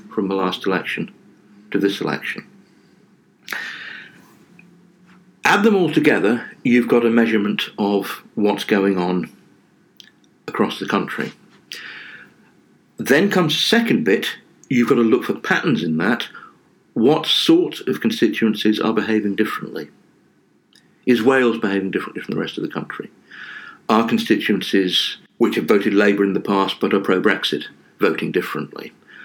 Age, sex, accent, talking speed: 50-69, male, British, 135 wpm